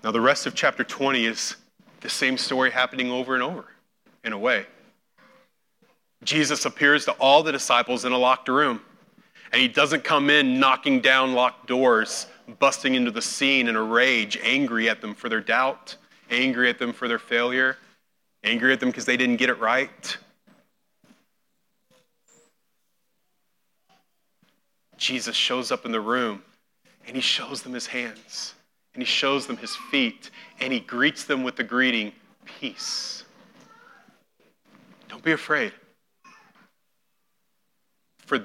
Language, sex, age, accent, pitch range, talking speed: English, male, 30-49, American, 125-155 Hz, 145 wpm